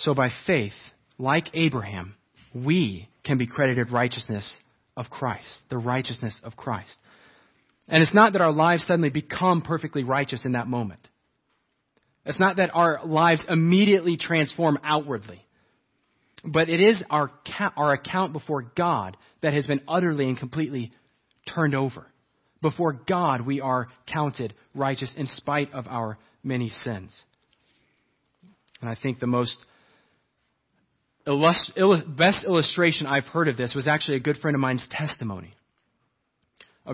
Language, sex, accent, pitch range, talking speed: English, male, American, 125-160 Hz, 140 wpm